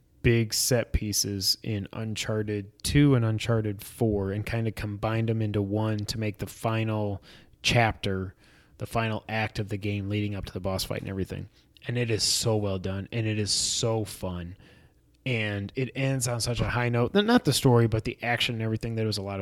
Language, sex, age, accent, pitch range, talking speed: English, male, 20-39, American, 100-125 Hz, 205 wpm